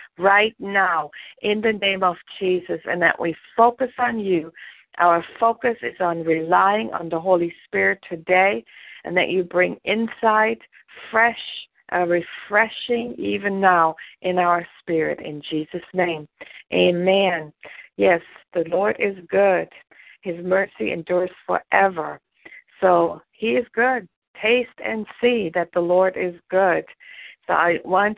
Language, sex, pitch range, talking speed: English, female, 175-220 Hz, 135 wpm